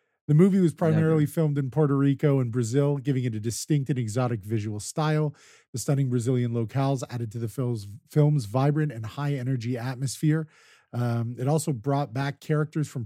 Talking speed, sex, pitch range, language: 170 wpm, male, 130-150 Hz, English